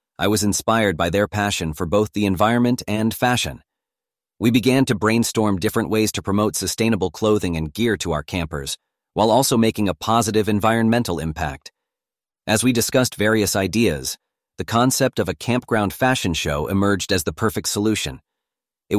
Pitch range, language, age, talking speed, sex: 90-110 Hz, English, 40-59, 165 wpm, male